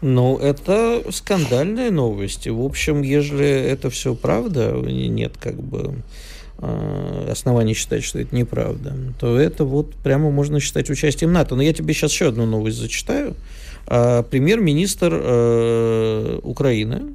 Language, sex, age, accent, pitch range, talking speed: Russian, male, 50-69, native, 120-150 Hz, 125 wpm